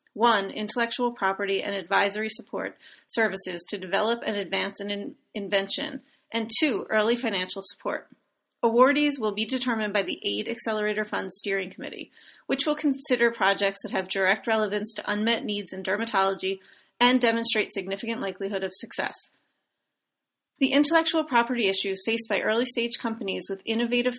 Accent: American